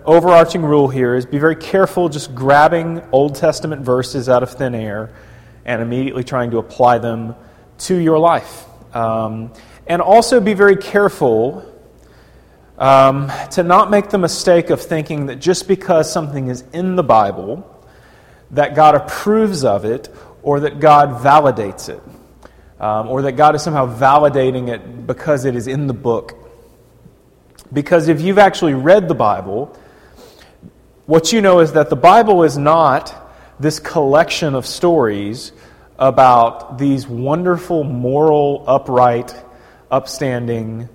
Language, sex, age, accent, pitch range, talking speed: English, male, 30-49, American, 125-170 Hz, 140 wpm